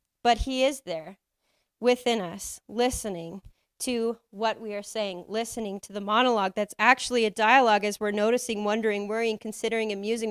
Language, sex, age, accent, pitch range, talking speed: English, female, 30-49, American, 195-235 Hz, 155 wpm